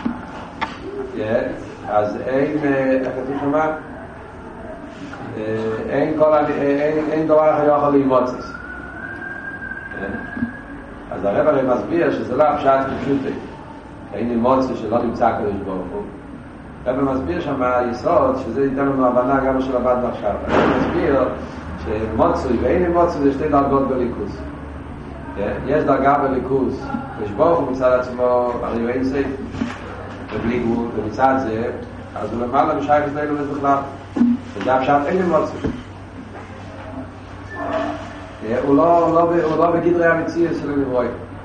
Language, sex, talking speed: Hebrew, male, 105 wpm